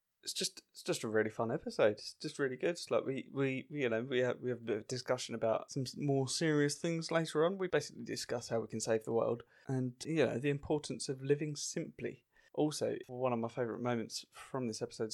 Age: 20-39